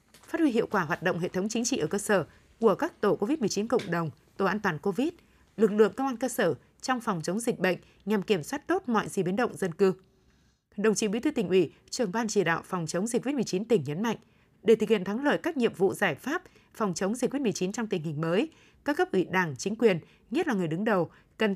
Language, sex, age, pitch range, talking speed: Vietnamese, female, 20-39, 185-235 Hz, 255 wpm